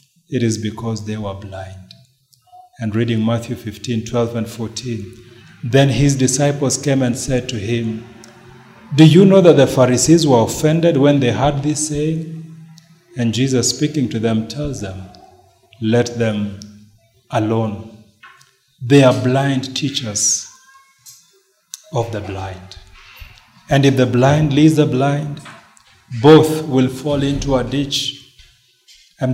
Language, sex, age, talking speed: English, male, 40-59, 135 wpm